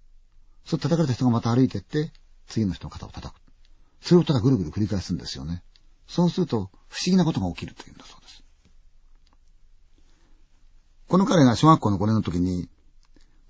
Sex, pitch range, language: male, 75-125 Hz, Chinese